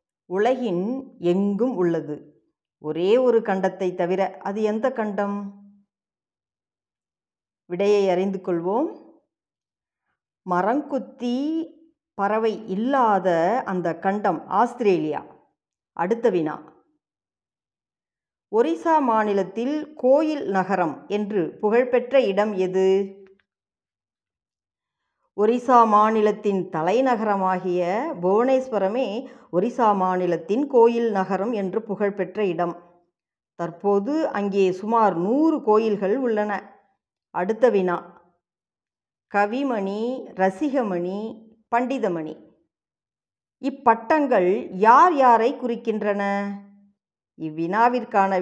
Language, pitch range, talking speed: Tamil, 190-235 Hz, 70 wpm